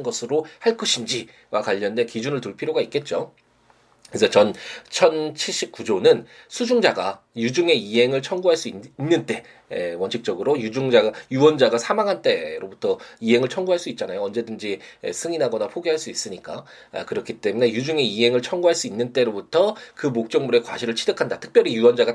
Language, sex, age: Korean, male, 20-39